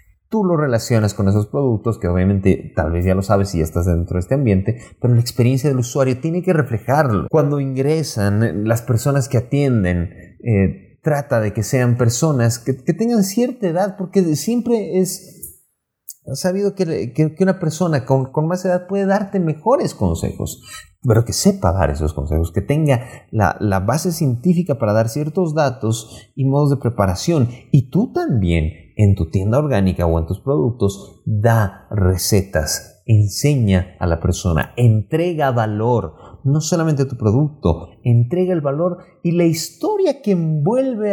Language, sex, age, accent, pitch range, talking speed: Spanish, male, 30-49, Mexican, 100-150 Hz, 165 wpm